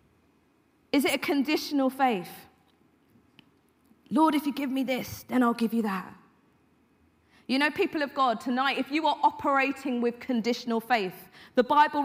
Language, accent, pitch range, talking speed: English, British, 220-275 Hz, 155 wpm